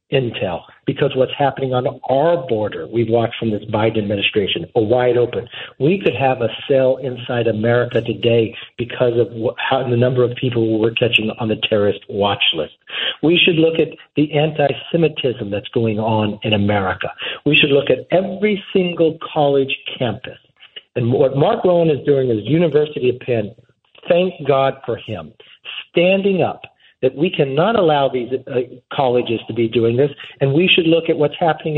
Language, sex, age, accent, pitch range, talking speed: English, male, 50-69, American, 120-155 Hz, 170 wpm